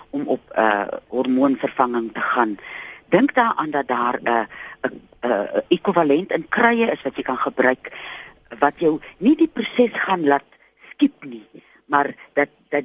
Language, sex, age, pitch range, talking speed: Dutch, female, 50-69, 135-215 Hz, 170 wpm